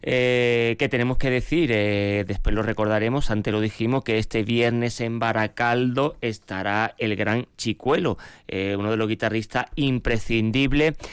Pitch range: 110-125 Hz